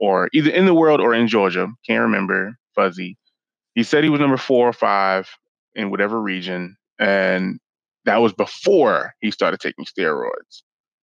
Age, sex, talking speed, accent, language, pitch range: 20-39, male, 165 wpm, American, English, 95-120 Hz